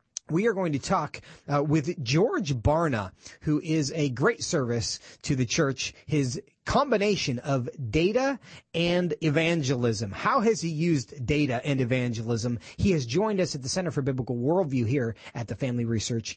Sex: male